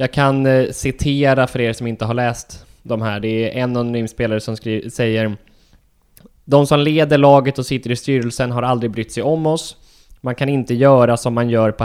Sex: male